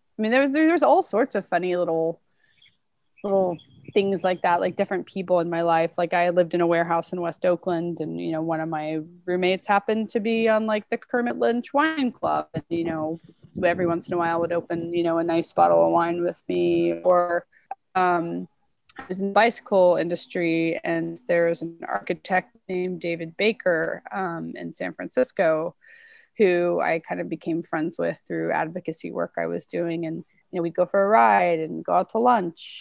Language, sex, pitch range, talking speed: English, female, 165-205 Hz, 200 wpm